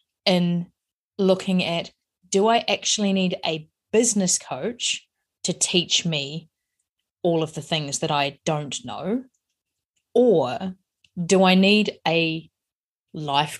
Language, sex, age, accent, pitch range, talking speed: English, female, 20-39, Australian, 155-195 Hz, 120 wpm